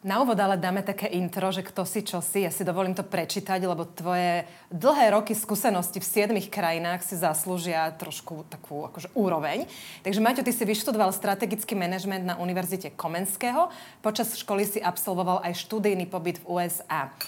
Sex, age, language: female, 30-49, Slovak